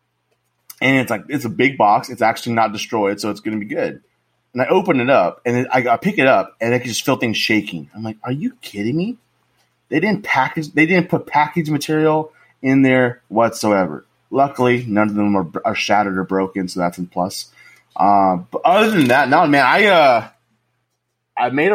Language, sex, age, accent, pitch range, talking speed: English, male, 20-39, American, 100-130 Hz, 205 wpm